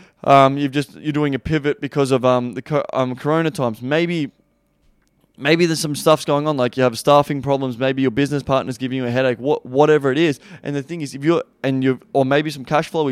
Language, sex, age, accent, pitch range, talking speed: English, male, 20-39, Australian, 130-155 Hz, 240 wpm